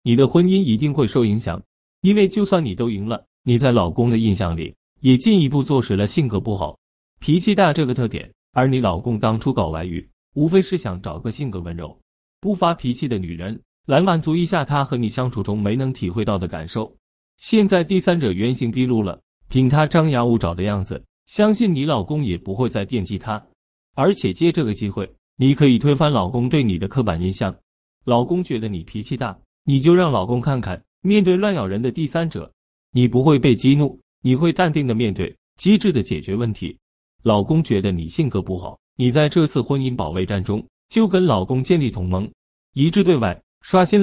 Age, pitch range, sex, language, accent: 30-49, 95-155 Hz, male, Chinese, native